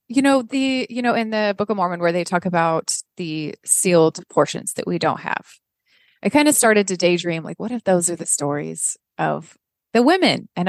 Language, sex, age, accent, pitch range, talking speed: English, female, 20-39, American, 175-230 Hz, 215 wpm